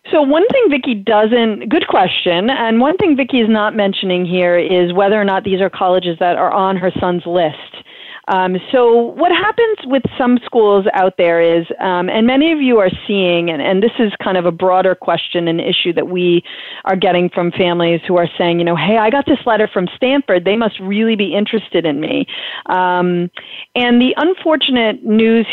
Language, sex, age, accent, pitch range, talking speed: English, female, 40-59, American, 180-225 Hz, 200 wpm